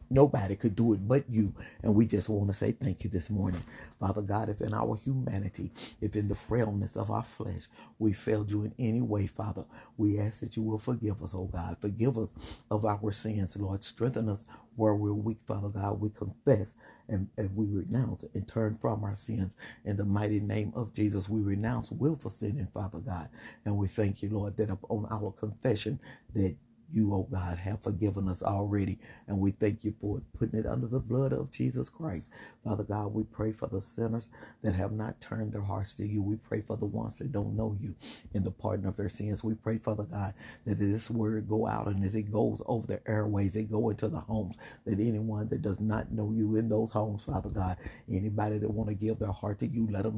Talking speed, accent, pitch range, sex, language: 220 wpm, American, 100-110 Hz, male, English